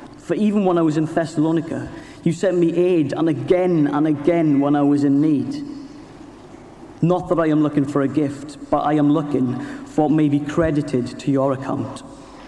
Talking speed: 190 wpm